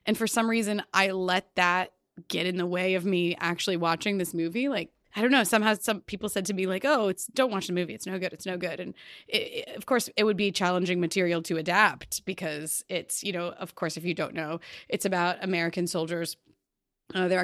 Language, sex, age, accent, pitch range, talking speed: English, female, 20-39, American, 170-205 Hz, 235 wpm